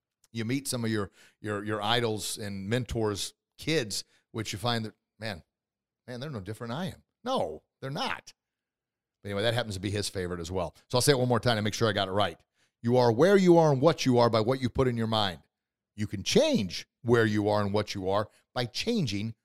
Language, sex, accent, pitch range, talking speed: English, male, American, 115-175 Hz, 240 wpm